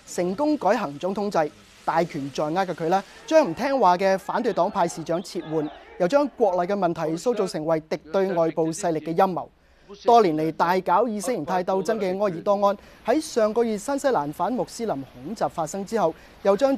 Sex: male